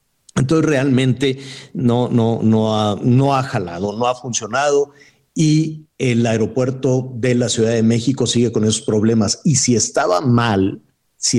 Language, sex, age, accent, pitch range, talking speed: Spanish, male, 50-69, Mexican, 110-135 Hz, 155 wpm